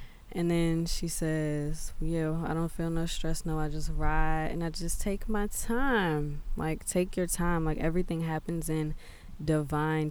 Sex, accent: female, American